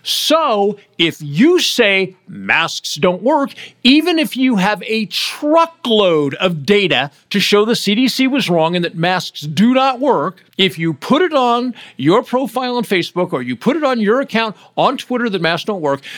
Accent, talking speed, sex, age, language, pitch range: American, 180 wpm, male, 50-69, English, 155-240 Hz